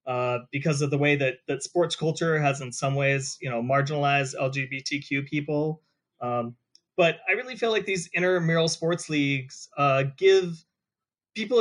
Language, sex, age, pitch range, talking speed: English, male, 30-49, 140-175 Hz, 160 wpm